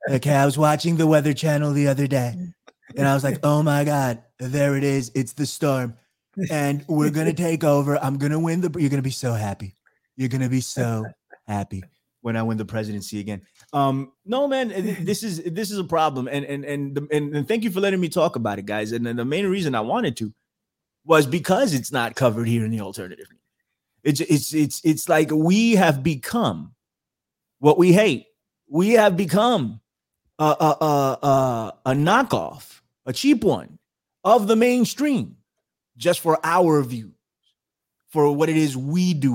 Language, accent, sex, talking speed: English, American, male, 200 wpm